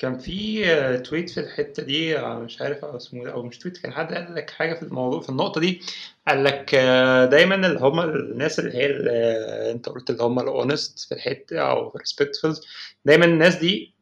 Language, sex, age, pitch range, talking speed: Arabic, male, 20-39, 140-195 Hz, 185 wpm